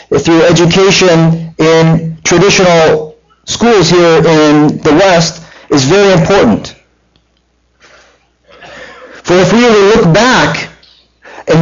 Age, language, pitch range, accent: 50-69, English, 160-200 Hz, American